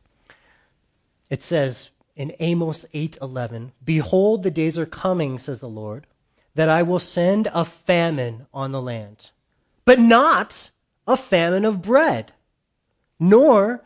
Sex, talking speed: male, 125 wpm